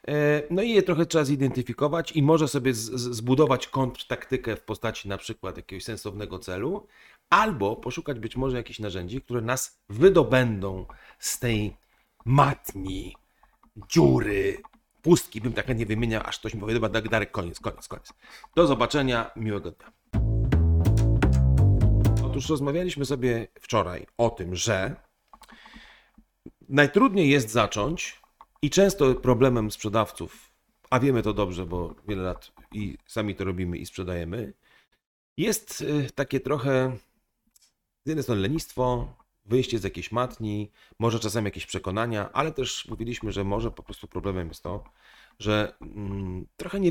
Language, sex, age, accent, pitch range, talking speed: Polish, male, 40-59, native, 105-135 Hz, 135 wpm